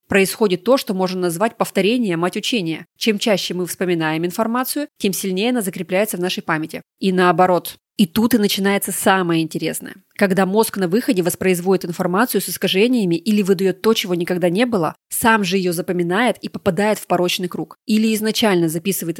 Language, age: Russian, 20-39